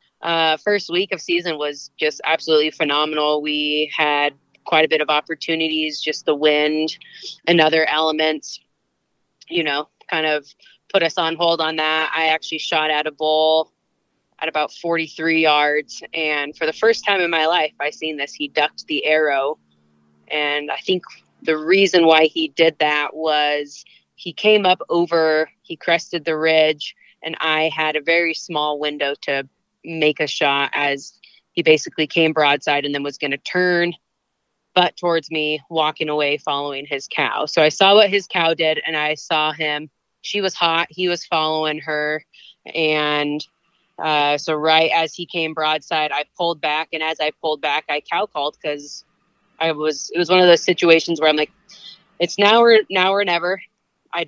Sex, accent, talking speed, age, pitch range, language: female, American, 180 wpm, 20-39, 150-170 Hz, English